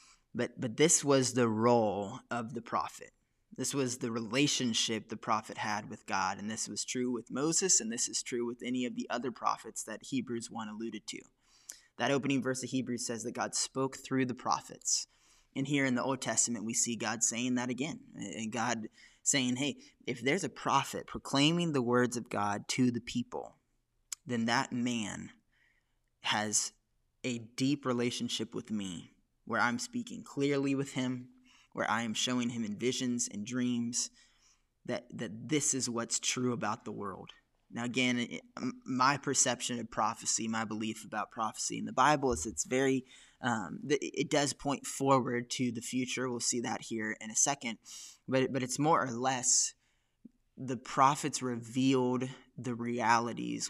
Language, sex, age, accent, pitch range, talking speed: English, male, 10-29, American, 115-135 Hz, 175 wpm